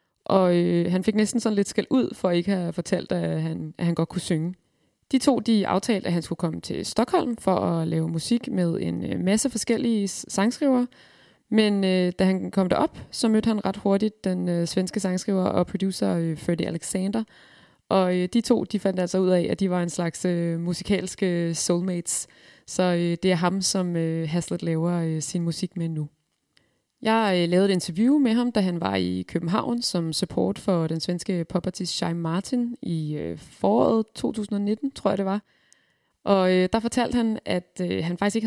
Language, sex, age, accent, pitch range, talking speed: Danish, female, 20-39, native, 175-215 Hz, 200 wpm